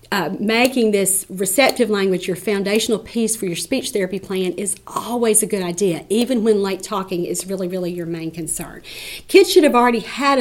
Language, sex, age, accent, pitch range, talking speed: English, female, 40-59, American, 190-240 Hz, 190 wpm